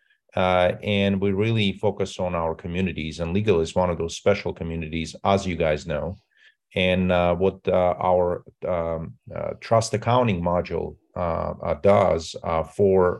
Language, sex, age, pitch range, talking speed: English, male, 30-49, 80-100 Hz, 160 wpm